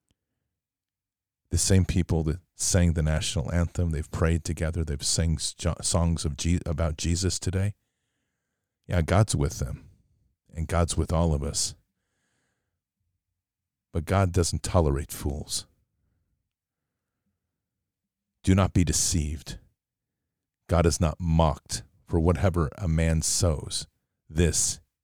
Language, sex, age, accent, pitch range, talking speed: English, male, 50-69, American, 80-95 Hz, 115 wpm